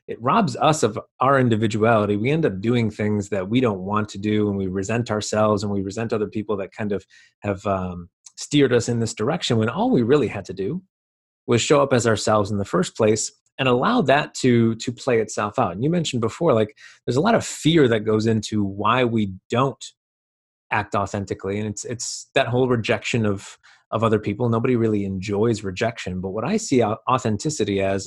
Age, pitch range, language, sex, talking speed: 30-49, 100-125 Hz, English, male, 210 wpm